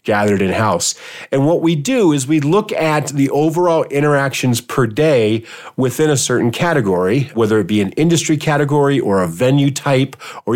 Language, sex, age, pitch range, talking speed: English, male, 30-49, 110-150 Hz, 170 wpm